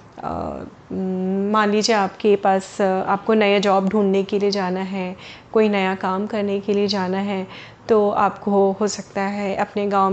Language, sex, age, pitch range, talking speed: Hindi, female, 30-49, 205-255 Hz, 160 wpm